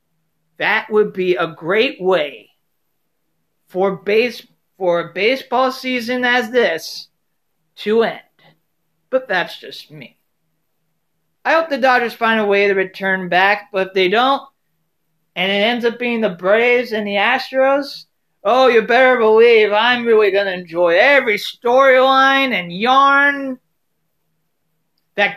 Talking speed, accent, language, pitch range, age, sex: 135 wpm, American, English, 170-255 Hz, 40-59, male